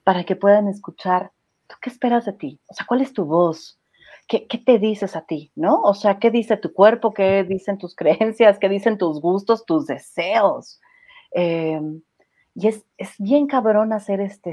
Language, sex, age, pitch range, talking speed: Spanish, female, 40-59, 175-220 Hz, 190 wpm